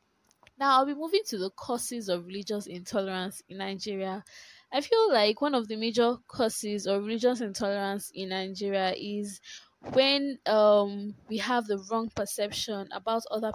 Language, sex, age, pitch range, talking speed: English, female, 10-29, 200-245 Hz, 155 wpm